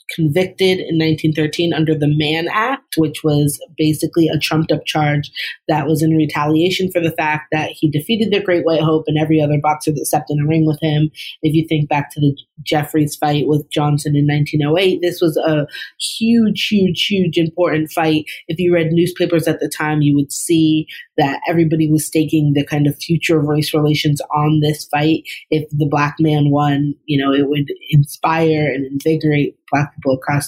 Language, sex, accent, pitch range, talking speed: English, female, American, 150-165 Hz, 190 wpm